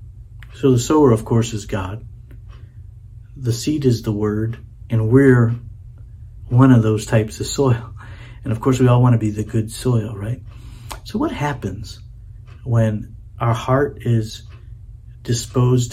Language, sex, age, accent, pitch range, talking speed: English, male, 50-69, American, 110-125 Hz, 145 wpm